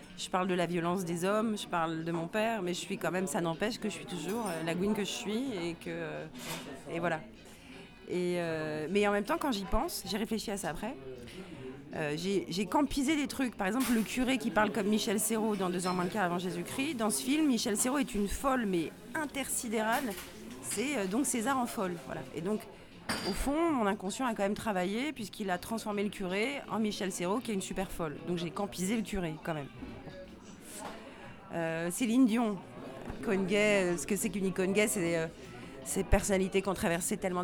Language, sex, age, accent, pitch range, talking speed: French, female, 30-49, French, 170-215 Hz, 215 wpm